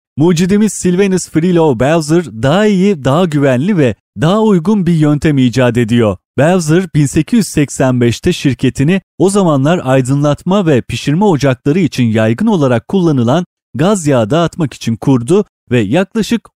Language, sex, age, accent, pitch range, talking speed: Turkish, male, 30-49, native, 130-180 Hz, 125 wpm